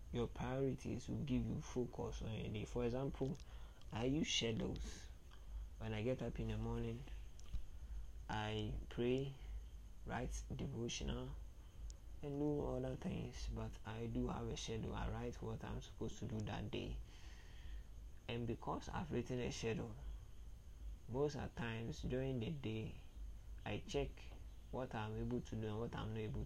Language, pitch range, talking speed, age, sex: English, 80-125 Hz, 155 wpm, 20-39, male